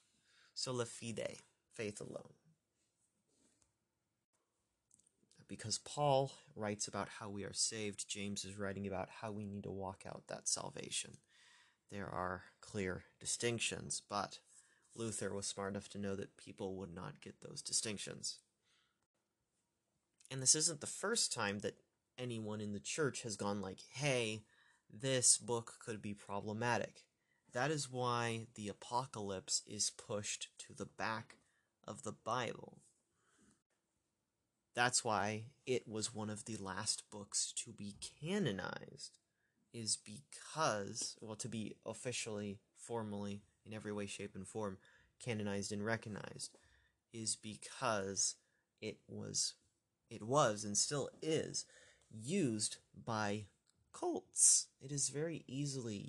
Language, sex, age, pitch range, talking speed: English, male, 30-49, 100-120 Hz, 130 wpm